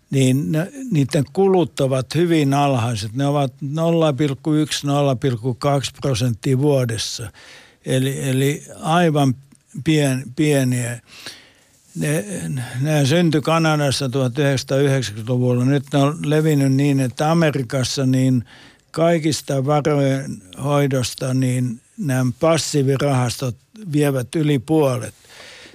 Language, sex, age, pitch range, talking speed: Finnish, male, 60-79, 130-155 Hz, 80 wpm